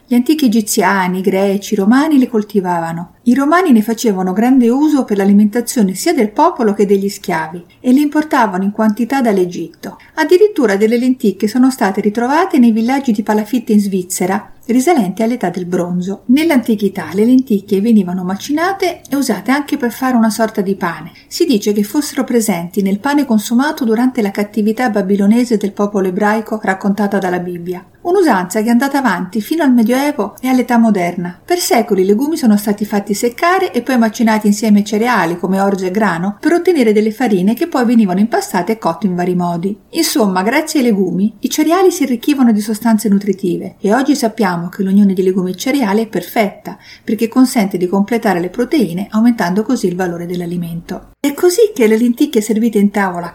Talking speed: 180 wpm